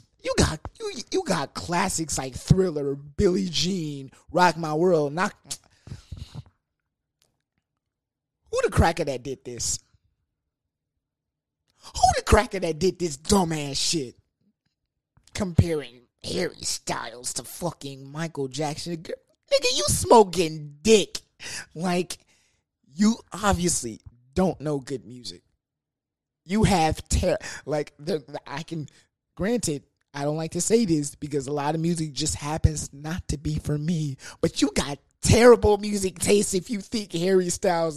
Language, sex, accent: English, male, American